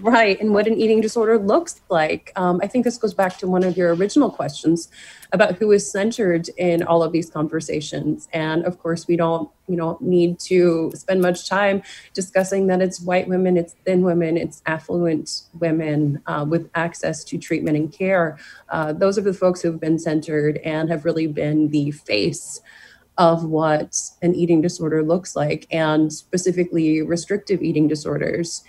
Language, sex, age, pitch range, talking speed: English, female, 30-49, 160-185 Hz, 180 wpm